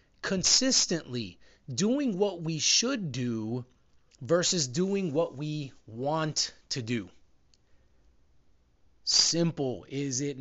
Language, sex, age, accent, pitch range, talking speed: English, male, 30-49, American, 115-170 Hz, 90 wpm